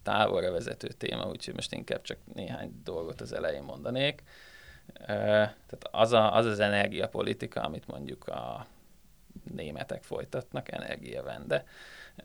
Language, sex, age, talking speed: Hungarian, male, 20-39, 115 wpm